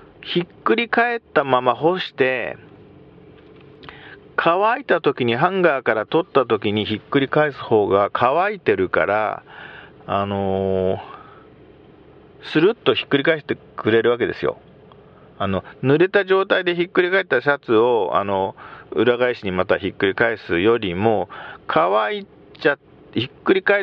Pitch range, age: 125-180 Hz, 50-69